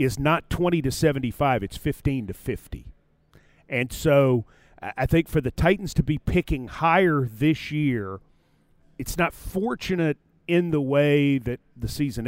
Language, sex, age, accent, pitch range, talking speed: English, male, 40-59, American, 120-155 Hz, 150 wpm